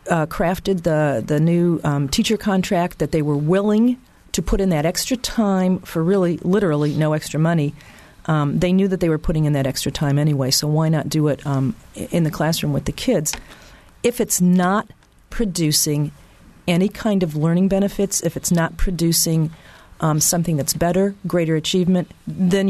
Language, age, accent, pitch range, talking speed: English, 40-59, American, 155-195 Hz, 180 wpm